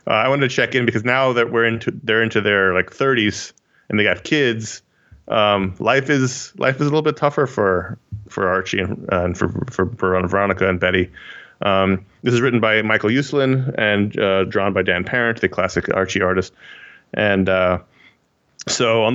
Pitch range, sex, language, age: 100-120 Hz, male, English, 20-39